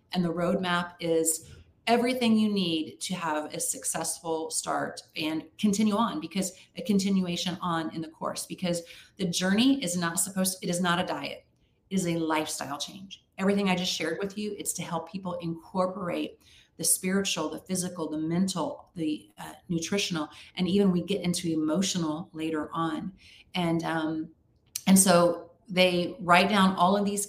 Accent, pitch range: American, 165-190 Hz